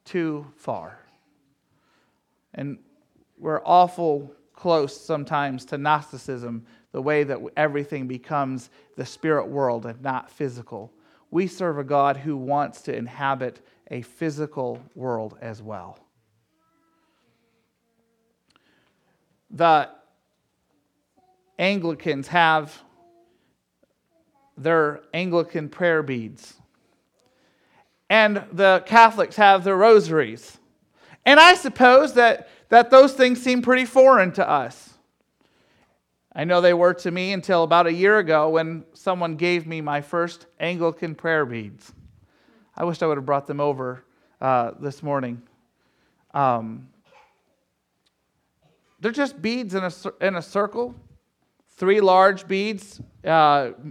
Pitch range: 140-195 Hz